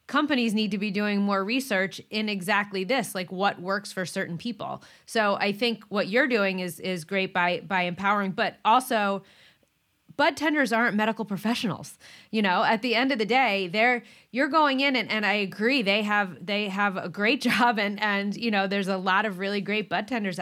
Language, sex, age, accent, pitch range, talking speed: English, female, 20-39, American, 185-230 Hz, 205 wpm